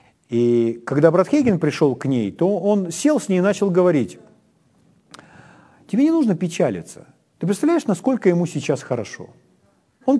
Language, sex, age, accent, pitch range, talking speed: Ukrainian, male, 40-59, native, 145-205 Hz, 155 wpm